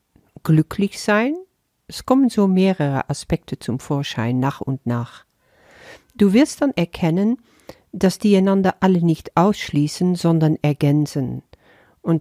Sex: female